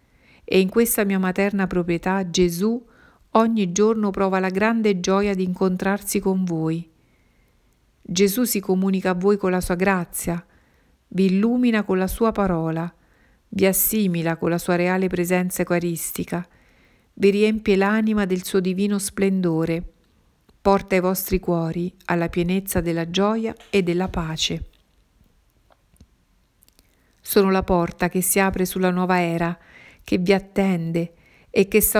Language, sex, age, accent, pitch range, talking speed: Italian, female, 50-69, native, 175-200 Hz, 135 wpm